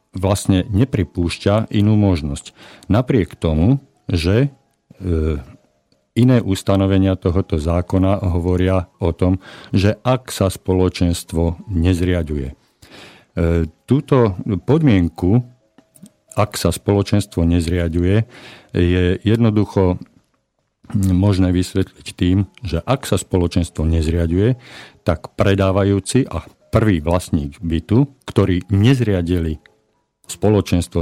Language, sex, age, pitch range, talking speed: Slovak, male, 50-69, 90-105 Hz, 85 wpm